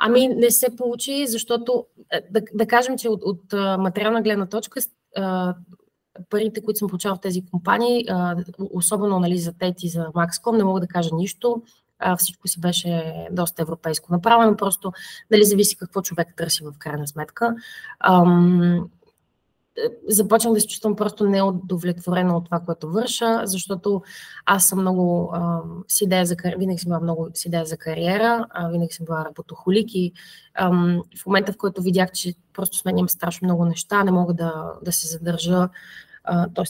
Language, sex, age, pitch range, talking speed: Bulgarian, female, 20-39, 175-215 Hz, 155 wpm